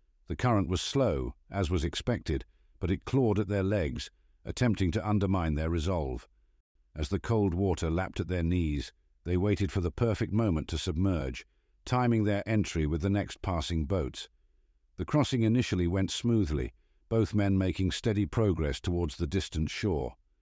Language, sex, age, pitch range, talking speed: English, male, 50-69, 80-105 Hz, 165 wpm